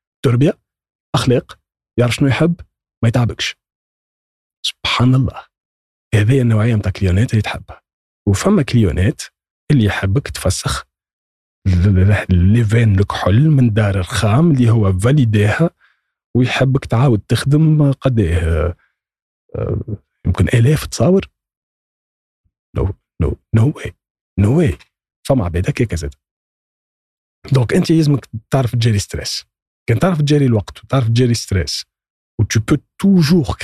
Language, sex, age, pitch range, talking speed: Arabic, male, 40-59, 95-135 Hz, 110 wpm